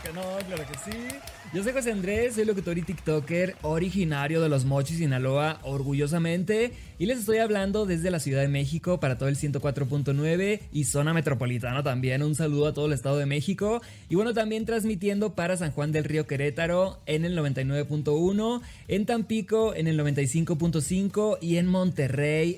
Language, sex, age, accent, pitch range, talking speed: Spanish, male, 20-39, Mexican, 145-190 Hz, 175 wpm